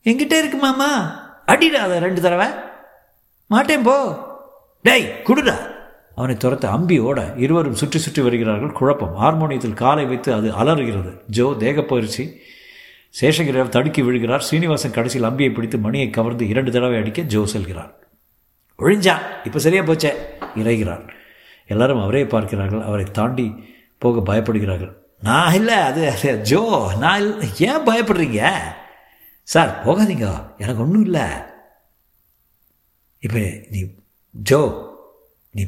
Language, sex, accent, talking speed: Tamil, male, native, 110 wpm